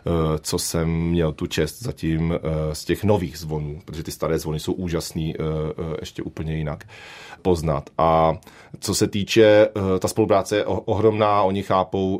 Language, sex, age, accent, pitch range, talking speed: Czech, male, 30-49, native, 80-95 Hz, 150 wpm